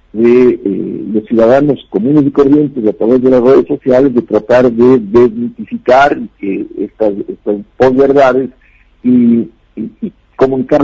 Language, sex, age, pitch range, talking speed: Spanish, male, 50-69, 110-140 Hz, 140 wpm